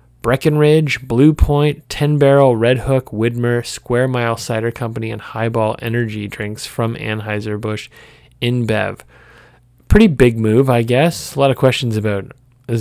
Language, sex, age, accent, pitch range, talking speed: English, male, 20-39, American, 110-130 Hz, 145 wpm